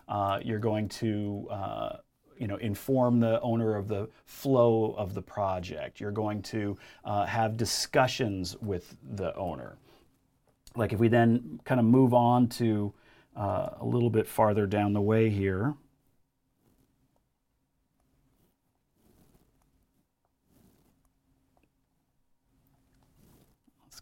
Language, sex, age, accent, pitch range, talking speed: English, male, 40-59, American, 105-120 Hz, 110 wpm